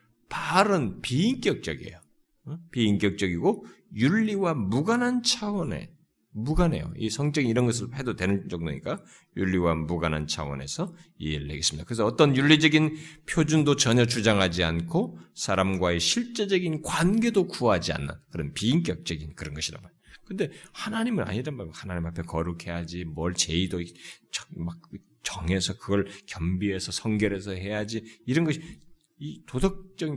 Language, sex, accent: Korean, male, native